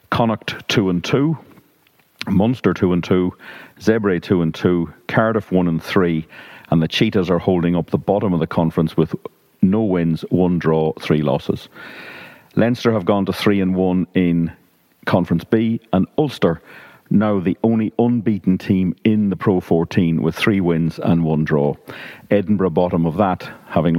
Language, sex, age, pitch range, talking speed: English, male, 50-69, 85-110 Hz, 165 wpm